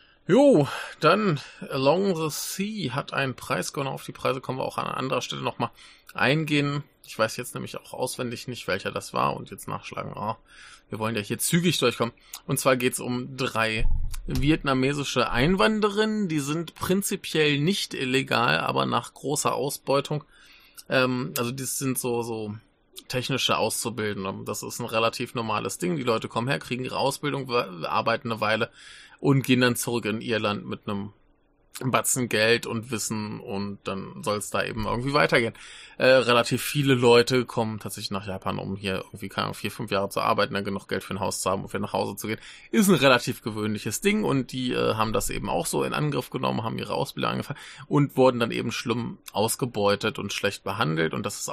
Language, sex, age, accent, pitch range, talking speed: German, male, 20-39, German, 110-135 Hz, 190 wpm